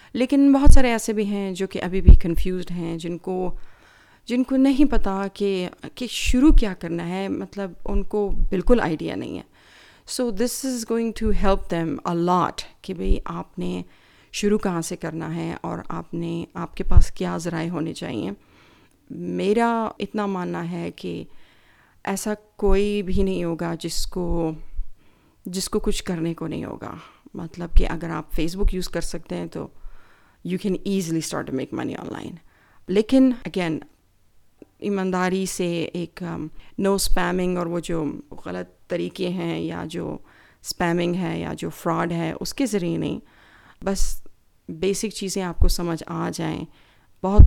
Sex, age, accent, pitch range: female, 40-59, Indian, 165-200 Hz